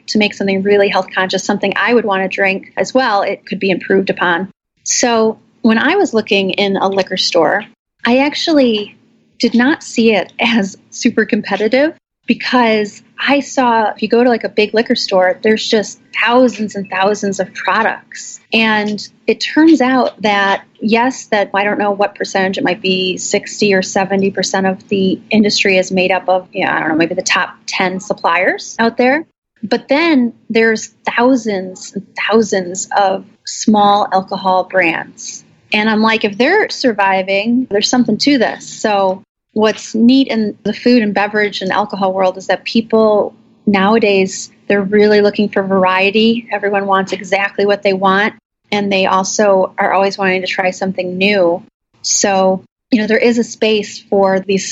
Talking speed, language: 175 wpm, English